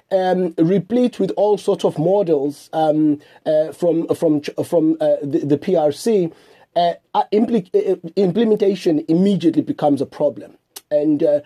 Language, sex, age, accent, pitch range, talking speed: English, male, 30-49, South African, 150-195 Hz, 125 wpm